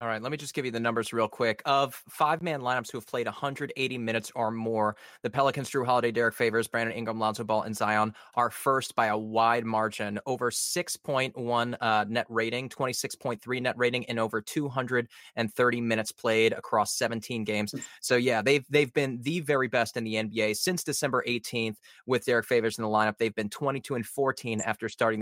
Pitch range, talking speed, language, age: 110-135 Hz, 195 wpm, English, 20-39